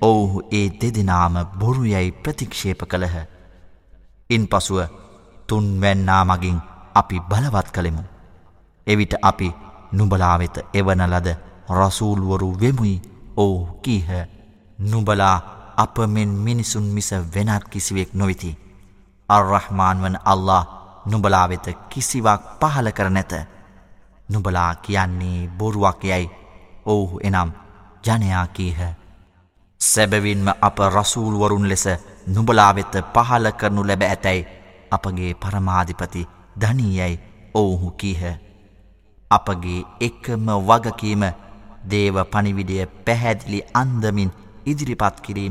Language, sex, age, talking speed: Arabic, male, 30-49, 95 wpm